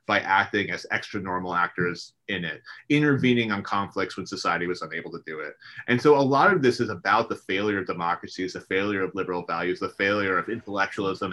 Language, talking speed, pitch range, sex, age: English, 205 wpm, 95-120 Hz, male, 30-49